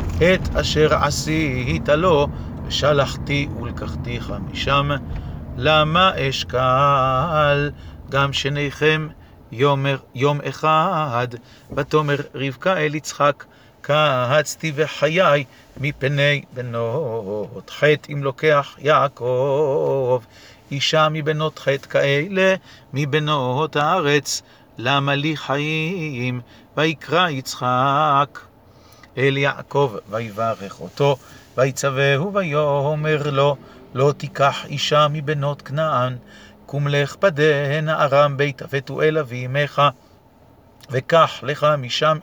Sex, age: male, 40-59